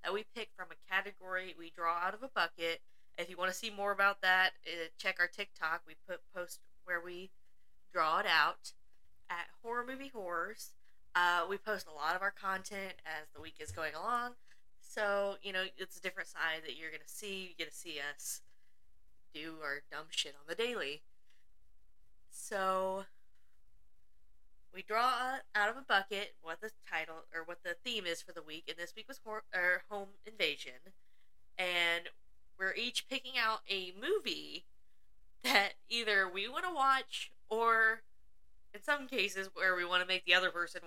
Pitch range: 165-210 Hz